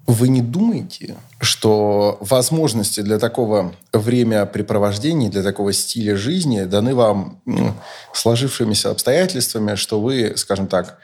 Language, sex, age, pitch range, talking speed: Russian, male, 20-39, 105-125 Hz, 110 wpm